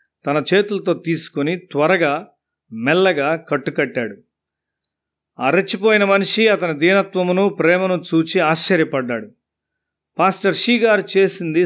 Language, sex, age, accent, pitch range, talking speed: Telugu, male, 40-59, native, 145-195 Hz, 80 wpm